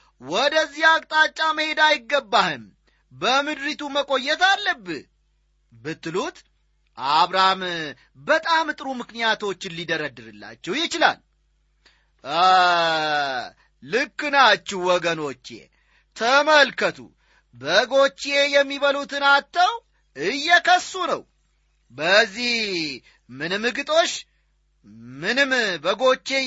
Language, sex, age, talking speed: Amharic, male, 40-59, 60 wpm